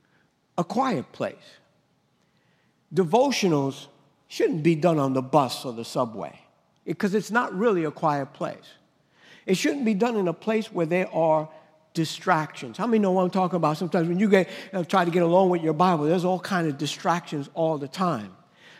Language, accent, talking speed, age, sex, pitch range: English, American, 190 wpm, 60-79, male, 160-200 Hz